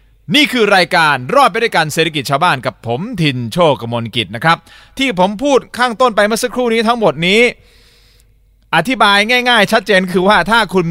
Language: Thai